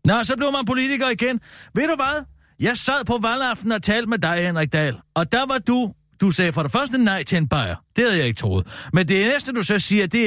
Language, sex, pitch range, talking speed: Danish, male, 150-225 Hz, 255 wpm